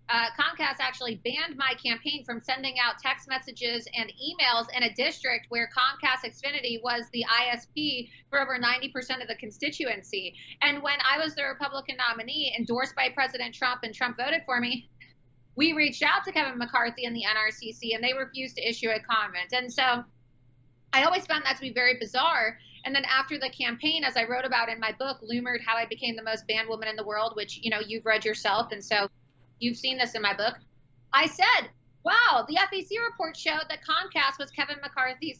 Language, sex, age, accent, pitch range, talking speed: English, female, 30-49, American, 225-265 Hz, 205 wpm